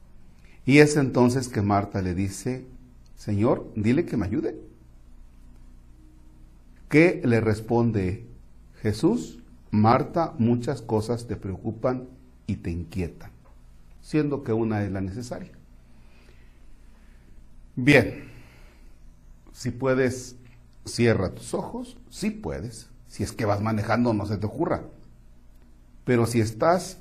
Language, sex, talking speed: Spanish, male, 110 wpm